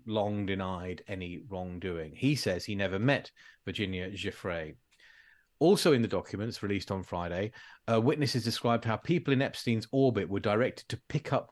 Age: 40-59